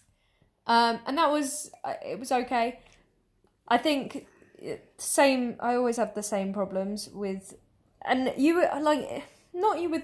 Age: 10-29